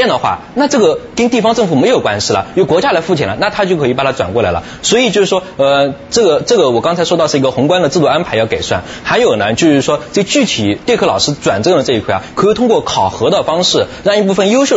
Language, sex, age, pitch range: Chinese, male, 20-39, 130-215 Hz